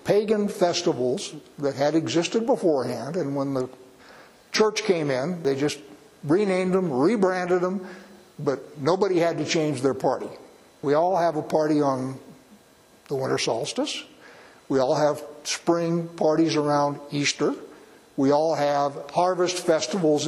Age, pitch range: 60-79, 150-195 Hz